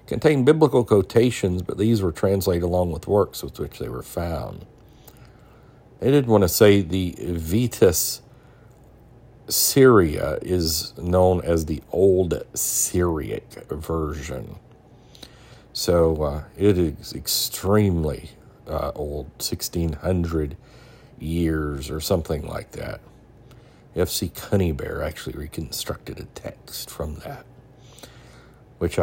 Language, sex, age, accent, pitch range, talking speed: English, male, 50-69, American, 80-115 Hz, 110 wpm